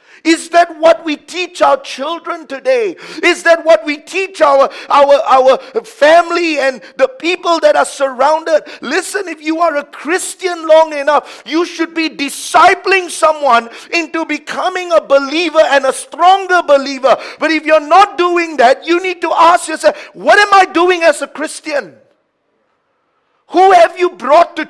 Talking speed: 165 wpm